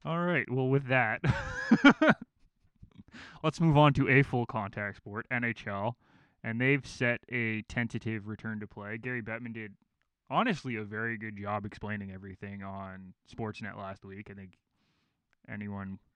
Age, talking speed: 20-39, 145 wpm